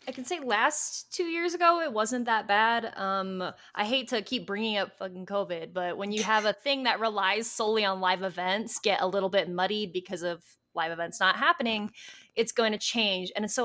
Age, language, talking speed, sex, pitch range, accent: 20-39, English, 215 wpm, female, 185-235 Hz, American